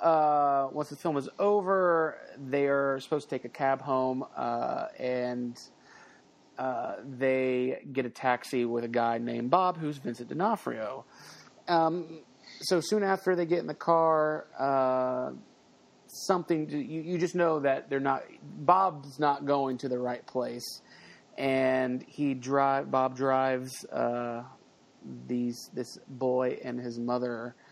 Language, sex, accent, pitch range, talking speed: English, male, American, 125-165 Hz, 135 wpm